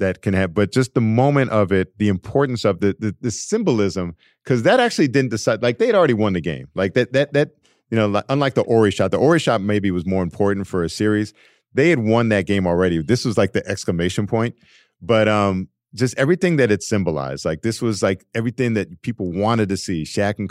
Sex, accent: male, American